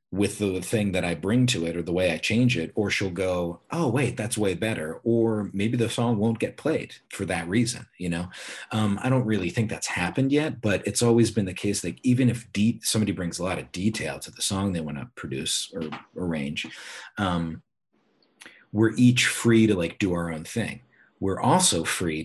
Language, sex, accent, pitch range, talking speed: Hebrew, male, American, 90-110 Hz, 220 wpm